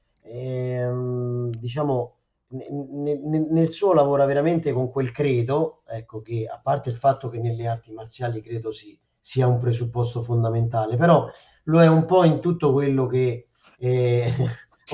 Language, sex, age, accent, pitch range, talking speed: Italian, male, 40-59, native, 125-155 Hz, 150 wpm